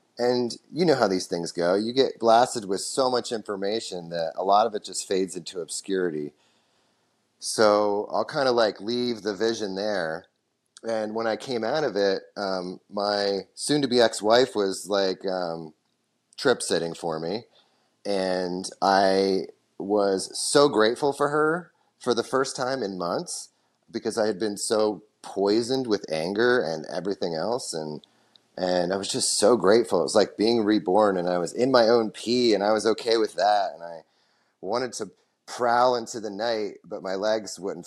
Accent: American